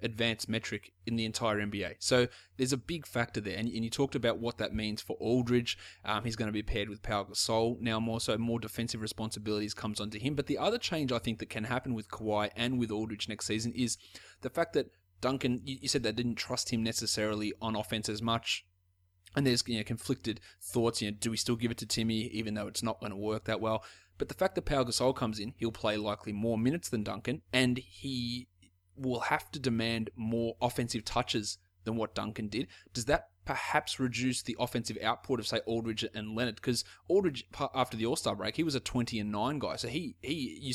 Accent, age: Australian, 20-39